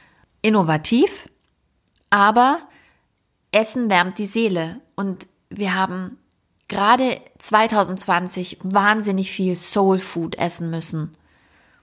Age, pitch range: 20-39, 170-210 Hz